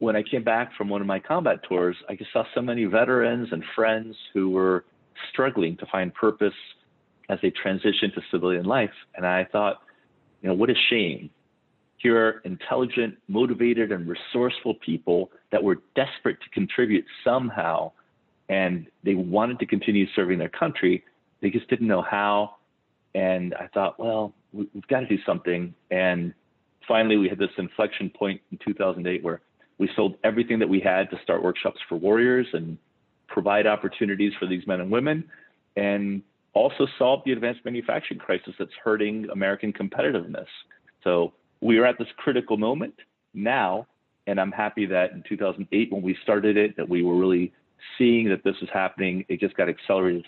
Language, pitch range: English, 95-110 Hz